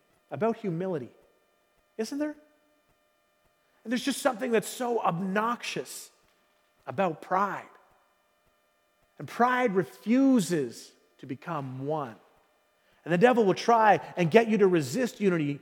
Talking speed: 115 wpm